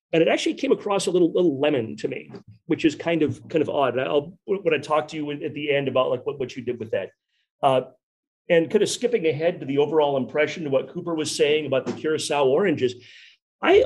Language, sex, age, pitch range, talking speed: English, male, 40-59, 135-185 Hz, 240 wpm